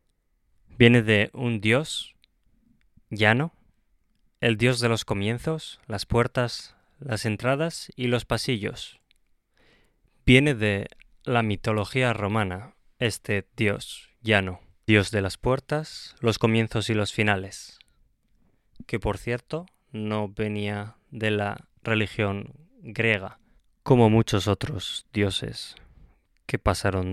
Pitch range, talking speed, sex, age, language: 100-115 Hz, 110 wpm, male, 20-39, Spanish